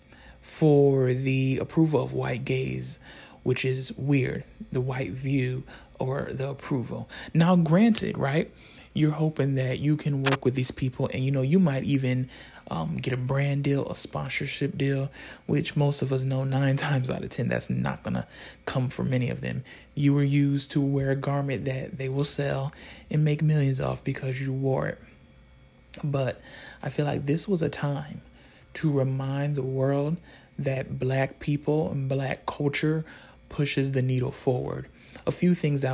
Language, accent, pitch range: English, American, 130-150 Hz